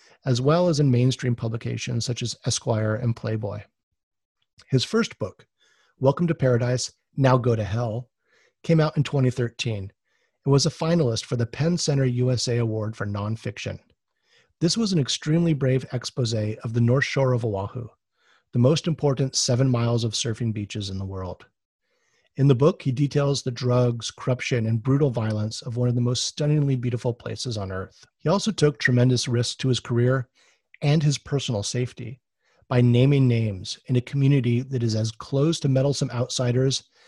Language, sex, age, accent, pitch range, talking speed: English, male, 40-59, American, 115-135 Hz, 170 wpm